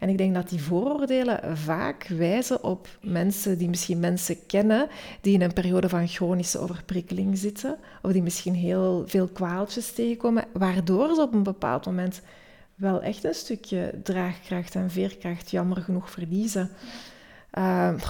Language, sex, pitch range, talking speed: Dutch, female, 180-215 Hz, 155 wpm